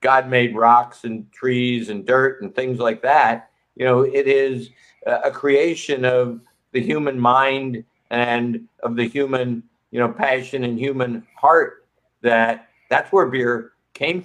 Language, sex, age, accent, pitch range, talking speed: Spanish, male, 60-79, American, 115-140 Hz, 150 wpm